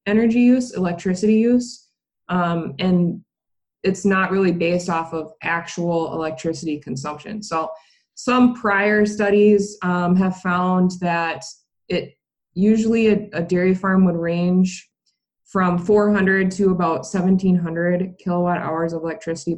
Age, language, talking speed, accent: 20-39, English, 125 wpm, American